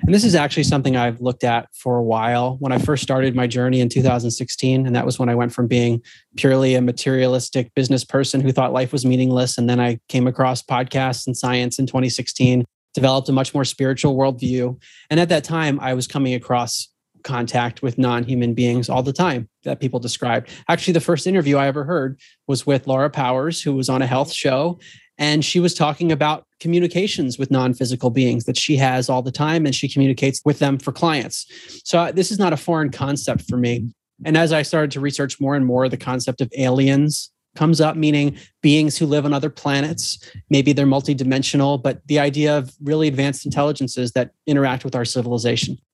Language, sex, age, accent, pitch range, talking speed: English, male, 30-49, American, 125-150 Hz, 205 wpm